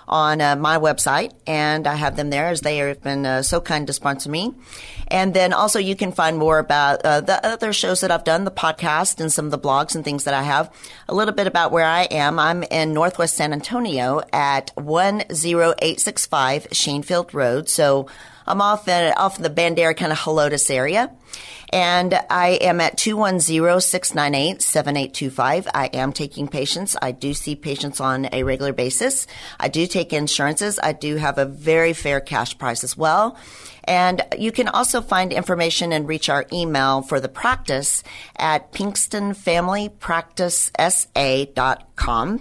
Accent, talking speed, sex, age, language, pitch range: American, 175 wpm, female, 40-59, English, 140-180 Hz